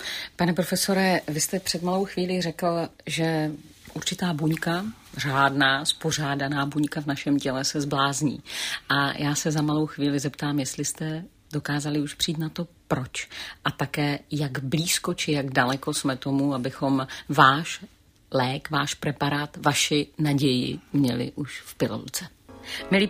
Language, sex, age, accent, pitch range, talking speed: Czech, female, 40-59, native, 140-175 Hz, 145 wpm